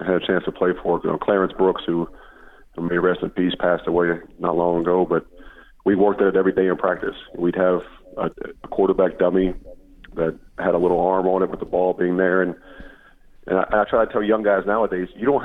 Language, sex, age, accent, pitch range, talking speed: English, male, 40-59, American, 85-95 Hz, 225 wpm